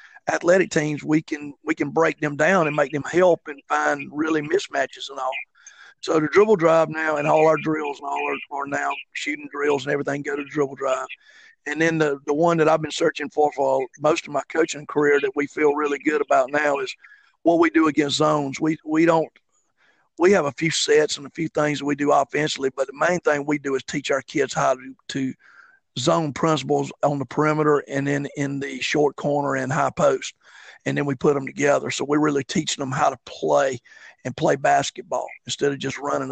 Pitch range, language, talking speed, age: 145-160 Hz, English, 225 wpm, 50-69